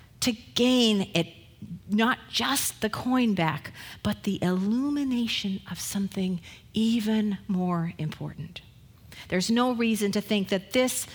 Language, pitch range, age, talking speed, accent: English, 160-230 Hz, 50-69, 125 wpm, American